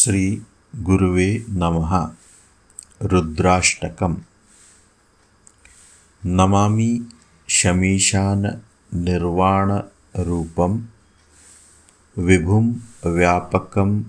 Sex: male